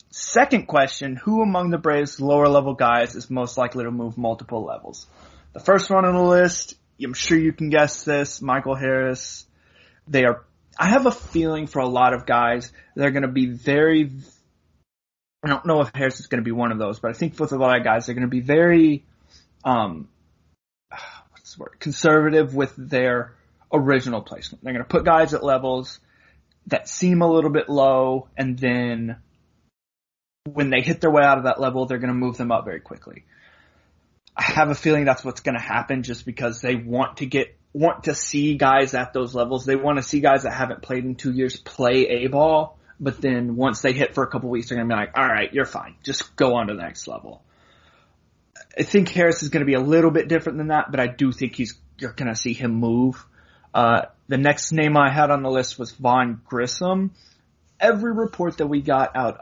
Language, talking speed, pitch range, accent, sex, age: English, 210 wpm, 125-150 Hz, American, male, 20-39